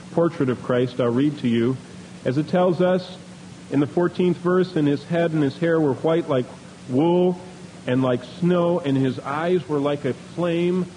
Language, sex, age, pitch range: English, male, 40-59, 125-180 Hz